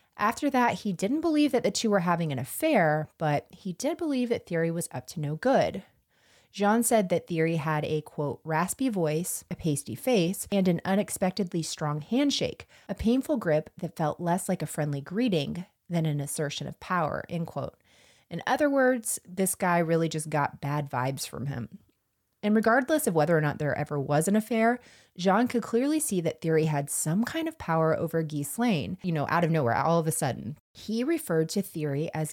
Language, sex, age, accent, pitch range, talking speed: English, female, 30-49, American, 155-210 Hz, 200 wpm